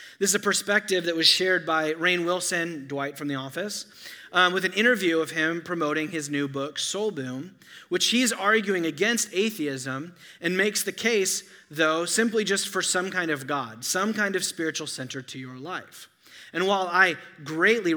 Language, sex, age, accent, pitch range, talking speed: English, male, 30-49, American, 145-195 Hz, 185 wpm